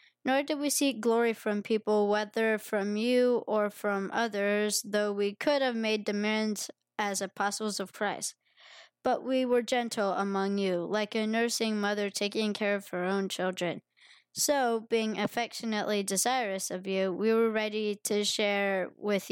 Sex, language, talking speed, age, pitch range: female, English, 160 wpm, 20-39, 205-235 Hz